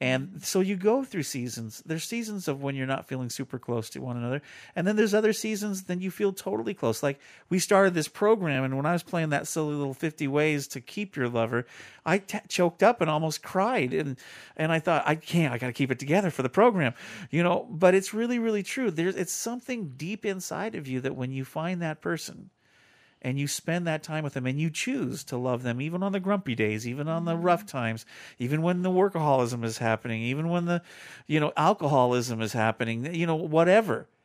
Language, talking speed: English, 225 wpm